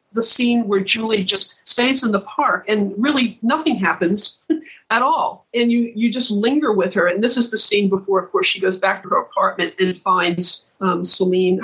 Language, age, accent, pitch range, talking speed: English, 50-69, American, 195-230 Hz, 205 wpm